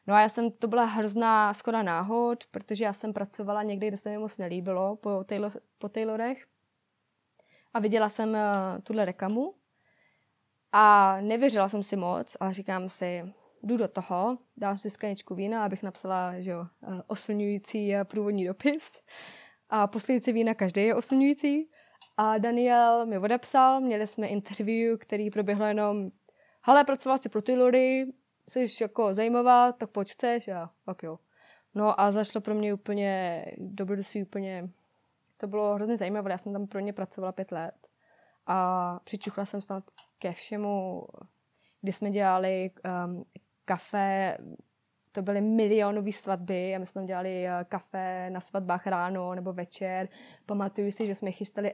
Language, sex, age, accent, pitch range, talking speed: Czech, female, 20-39, native, 190-220 Hz, 150 wpm